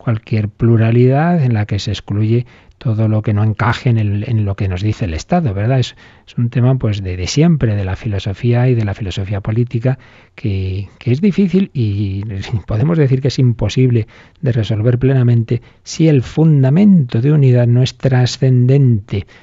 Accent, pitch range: Spanish, 110-130 Hz